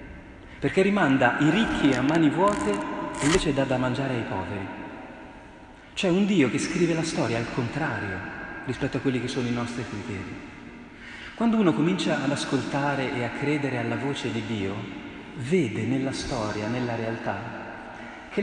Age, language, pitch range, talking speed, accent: 40-59, Italian, 115-155 Hz, 160 wpm, native